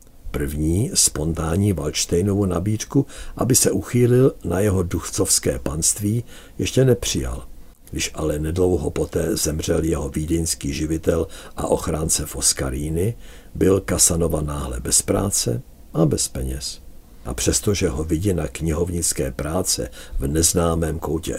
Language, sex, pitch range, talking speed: Czech, male, 75-90 Hz, 115 wpm